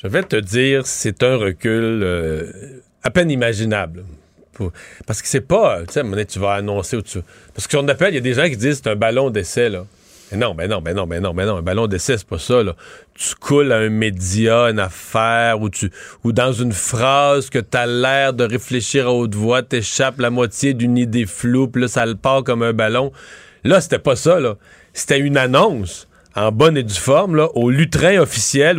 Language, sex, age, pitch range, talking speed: French, male, 40-59, 110-145 Hz, 240 wpm